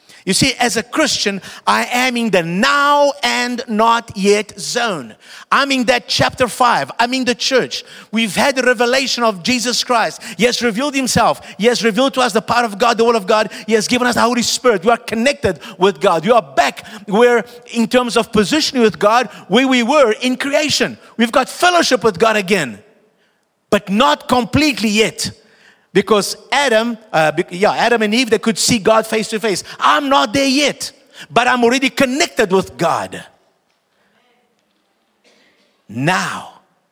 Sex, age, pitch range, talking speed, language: male, 50-69, 210-255 Hz, 175 wpm, English